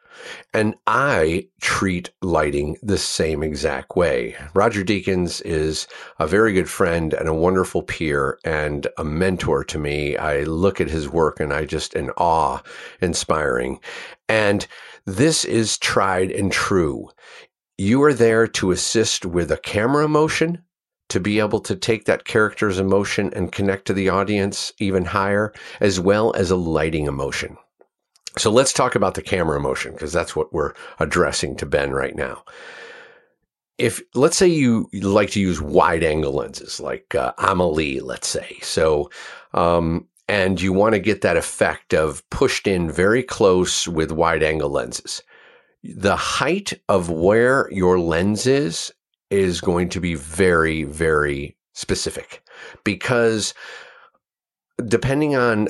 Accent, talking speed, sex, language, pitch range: American, 150 wpm, male, English, 85-110 Hz